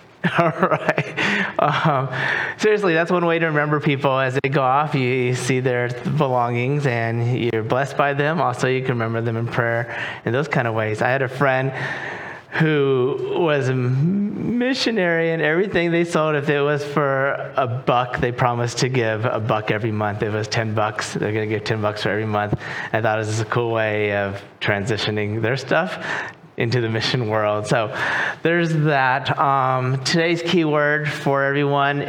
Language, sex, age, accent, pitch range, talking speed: English, male, 30-49, American, 115-150 Hz, 185 wpm